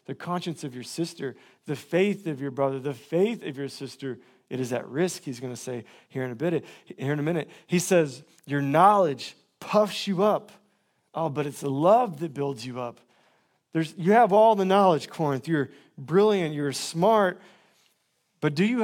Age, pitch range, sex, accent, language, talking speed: 40-59, 135-180 Hz, male, American, English, 190 wpm